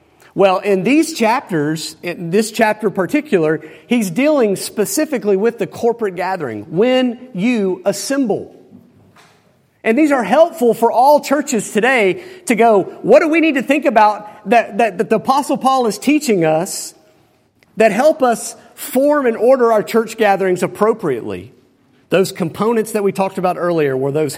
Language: English